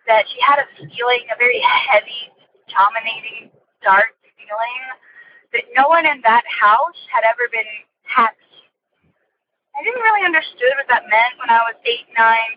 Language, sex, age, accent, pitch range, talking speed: English, female, 20-39, American, 245-370 Hz, 160 wpm